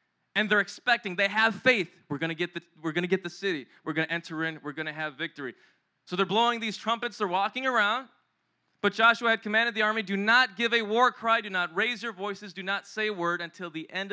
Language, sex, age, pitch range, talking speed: English, male, 20-39, 185-235 Hz, 235 wpm